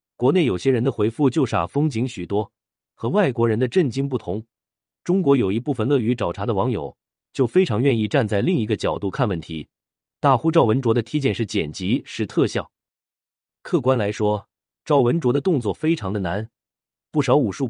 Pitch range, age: 100-135 Hz, 30-49